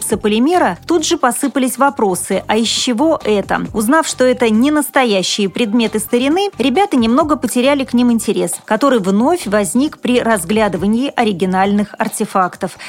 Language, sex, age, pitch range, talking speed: Russian, female, 30-49, 210-275 Hz, 135 wpm